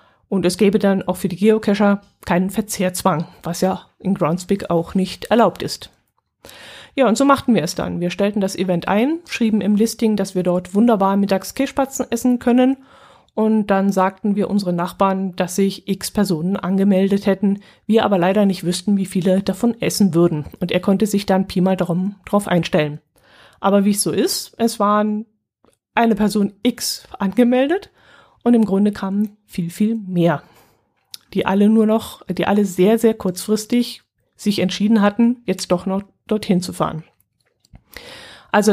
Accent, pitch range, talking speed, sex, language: German, 185-220 Hz, 165 wpm, female, German